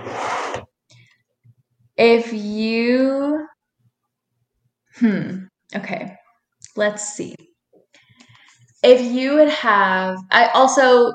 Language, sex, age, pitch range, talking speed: English, female, 10-29, 175-230 Hz, 65 wpm